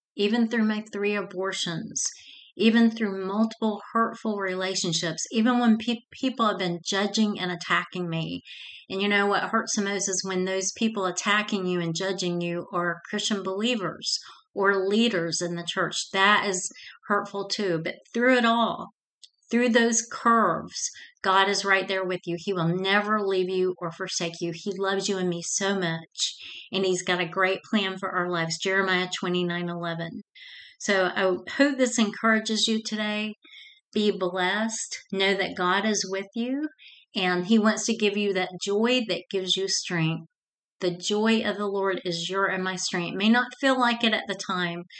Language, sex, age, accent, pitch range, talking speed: English, female, 40-59, American, 185-220 Hz, 175 wpm